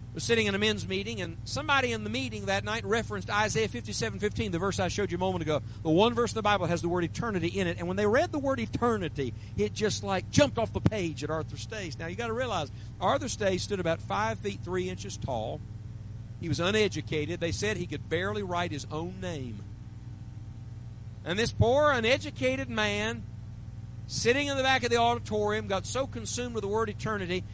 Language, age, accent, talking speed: English, 50-69, American, 215 wpm